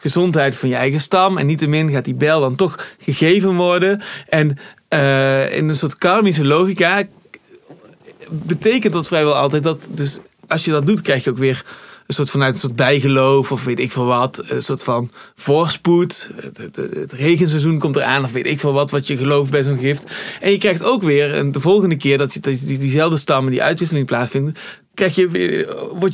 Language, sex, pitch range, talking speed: Dutch, male, 135-175 Hz, 215 wpm